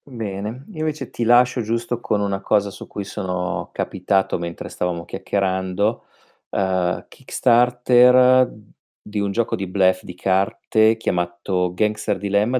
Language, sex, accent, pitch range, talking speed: Italian, male, native, 85-115 Hz, 135 wpm